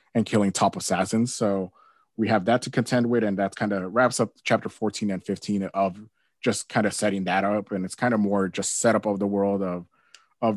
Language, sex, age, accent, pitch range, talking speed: English, male, 20-39, American, 100-115 Hz, 225 wpm